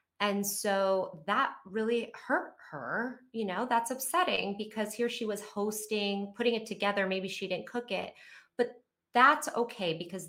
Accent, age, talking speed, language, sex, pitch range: American, 30-49, 155 wpm, English, female, 160-215 Hz